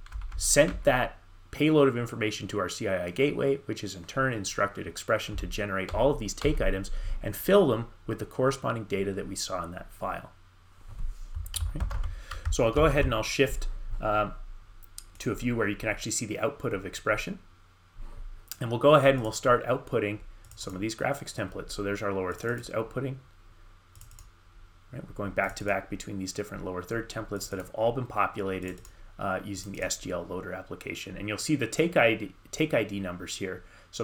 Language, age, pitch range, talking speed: English, 30-49, 95-110 Hz, 190 wpm